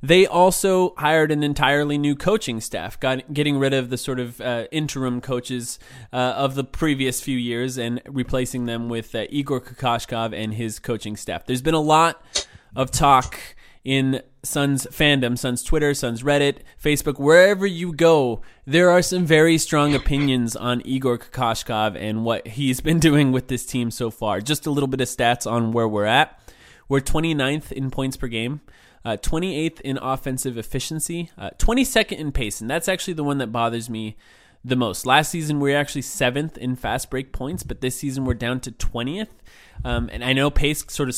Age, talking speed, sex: 20-39, 185 wpm, male